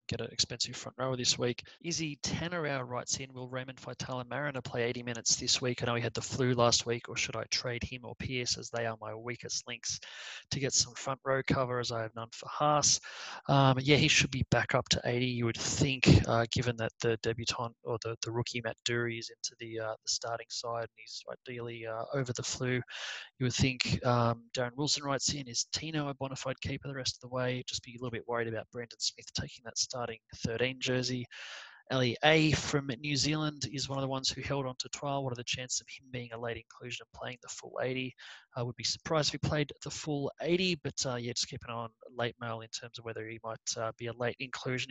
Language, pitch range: English, 115-135 Hz